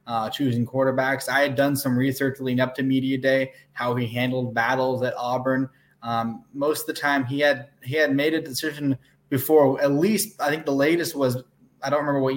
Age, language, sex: 20-39, English, male